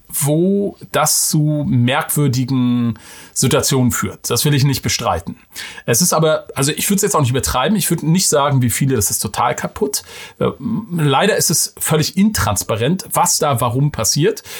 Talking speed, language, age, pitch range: 170 wpm, German, 40-59, 125-155 Hz